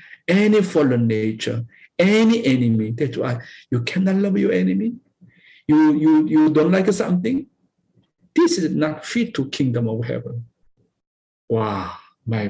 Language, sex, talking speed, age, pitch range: English, male, 135 wpm, 50-69, 120-195 Hz